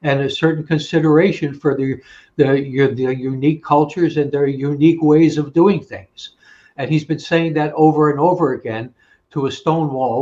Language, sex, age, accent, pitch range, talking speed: English, male, 60-79, American, 135-160 Hz, 175 wpm